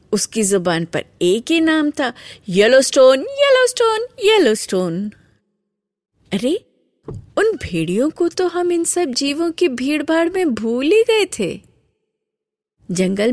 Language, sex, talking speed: Hindi, female, 120 wpm